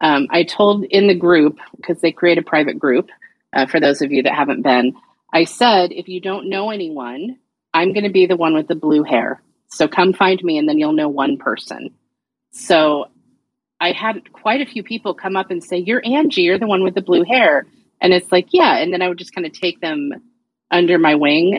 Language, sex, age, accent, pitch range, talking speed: English, female, 30-49, American, 160-215 Hz, 230 wpm